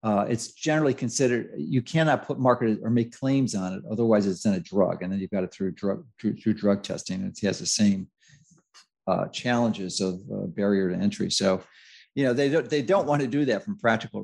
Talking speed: 230 wpm